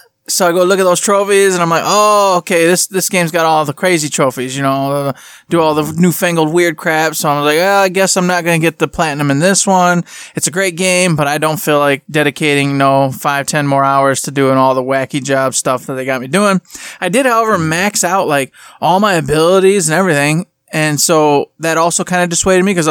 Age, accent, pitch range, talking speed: 20-39, American, 150-185 Hz, 240 wpm